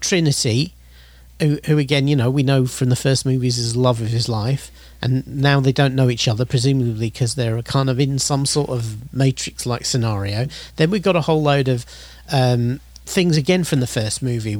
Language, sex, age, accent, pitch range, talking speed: English, male, 40-59, British, 115-145 Hz, 205 wpm